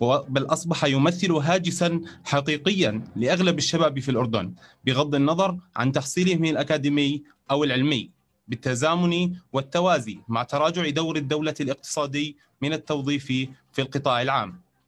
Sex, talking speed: male, 115 wpm